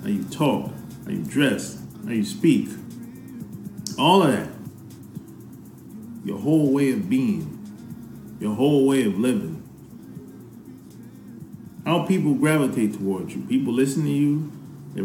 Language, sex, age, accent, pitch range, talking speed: English, male, 30-49, American, 120-165 Hz, 130 wpm